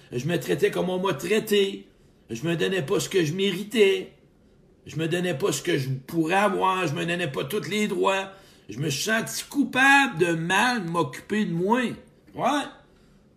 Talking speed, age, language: 195 wpm, 60-79, French